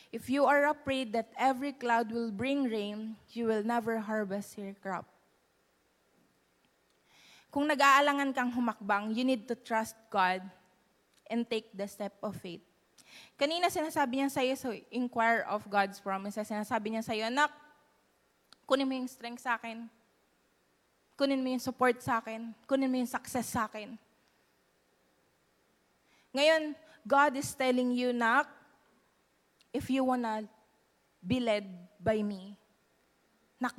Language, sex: English, female